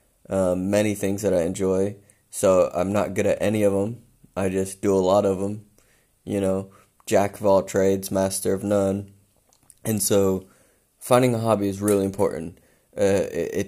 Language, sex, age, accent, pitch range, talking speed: English, male, 20-39, American, 90-100 Hz, 180 wpm